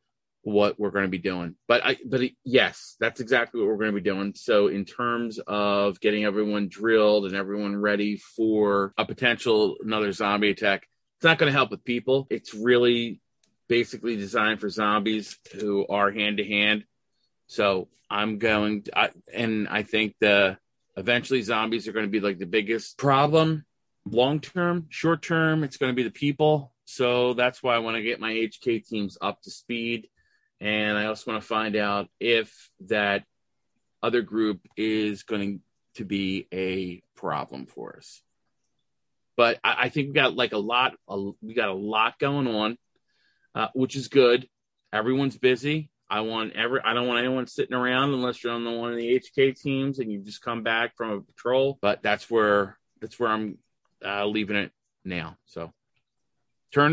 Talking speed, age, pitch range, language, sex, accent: 180 wpm, 30-49, 105-125 Hz, English, male, American